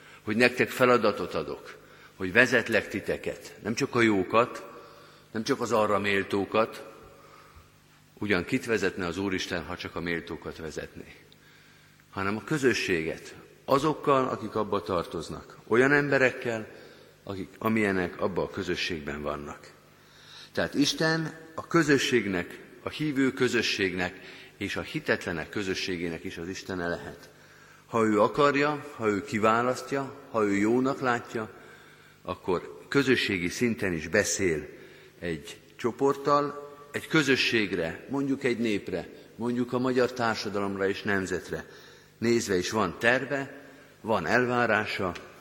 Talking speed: 120 wpm